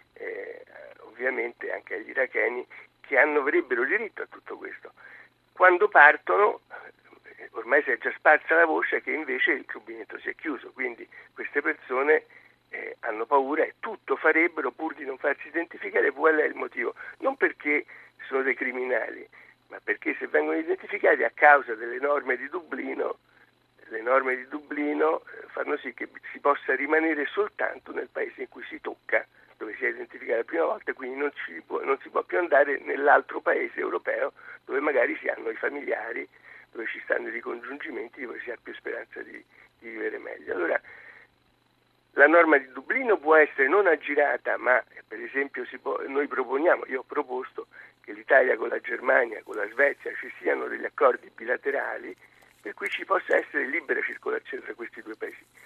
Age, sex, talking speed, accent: 60-79, male, 170 wpm, native